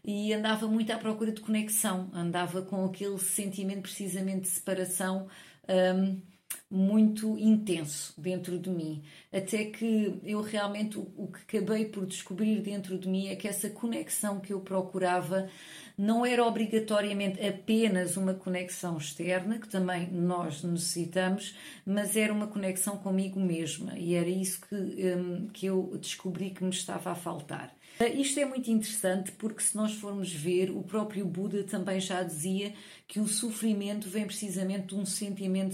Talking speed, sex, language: 155 wpm, female, Portuguese